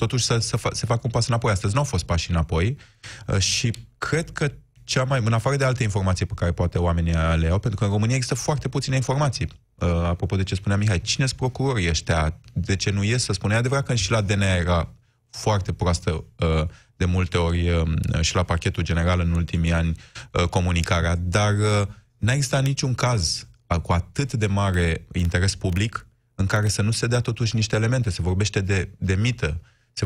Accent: native